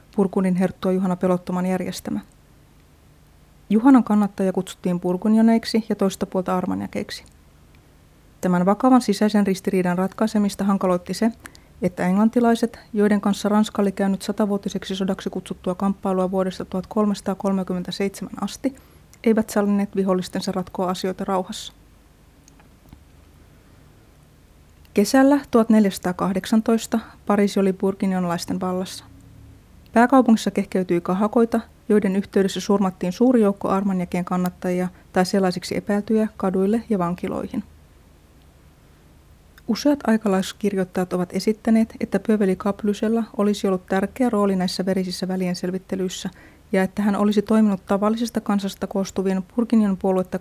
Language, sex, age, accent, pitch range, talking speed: Finnish, female, 30-49, native, 180-210 Hz, 100 wpm